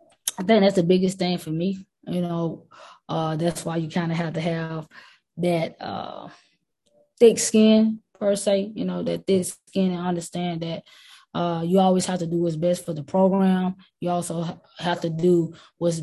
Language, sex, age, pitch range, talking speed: English, female, 20-39, 165-180 Hz, 185 wpm